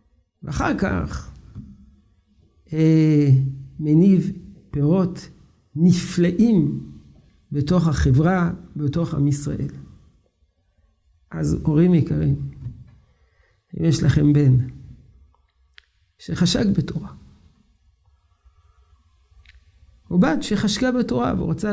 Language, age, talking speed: Hebrew, 50-69, 70 wpm